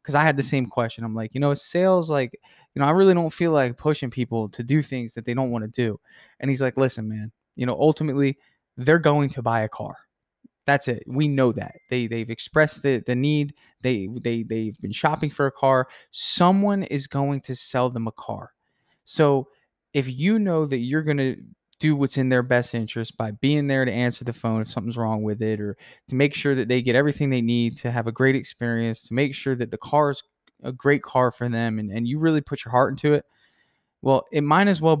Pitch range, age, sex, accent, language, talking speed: 115-140 Hz, 20-39, male, American, English, 235 wpm